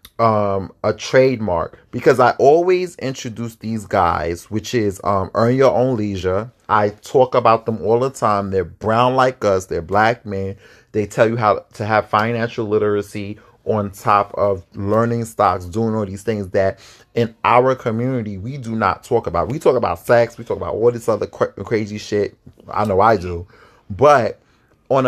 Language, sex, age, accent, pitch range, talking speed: English, male, 30-49, American, 105-125 Hz, 180 wpm